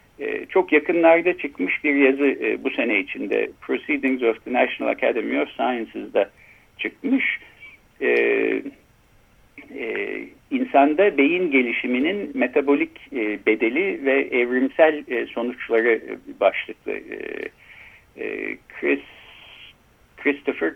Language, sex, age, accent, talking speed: Turkish, male, 60-79, native, 80 wpm